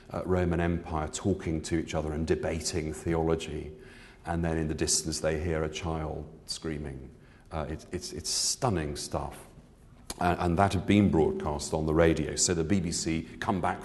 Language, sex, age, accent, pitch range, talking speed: English, male, 40-59, British, 80-95 Hz, 175 wpm